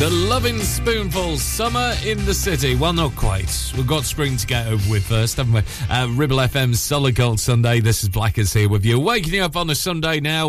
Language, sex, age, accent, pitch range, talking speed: English, male, 30-49, British, 105-155 Hz, 215 wpm